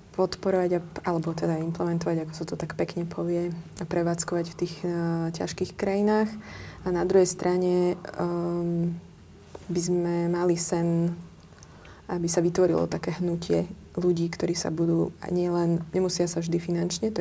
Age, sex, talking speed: 20-39, female, 145 wpm